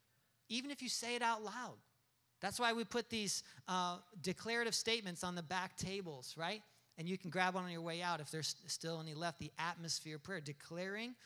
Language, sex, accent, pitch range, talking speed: English, male, American, 150-200 Hz, 210 wpm